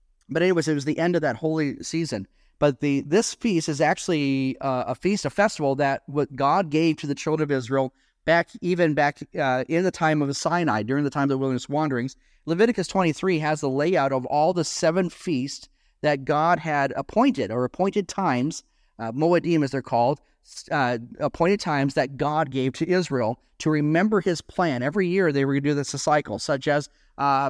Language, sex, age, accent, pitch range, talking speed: English, male, 40-59, American, 140-175 Hz, 205 wpm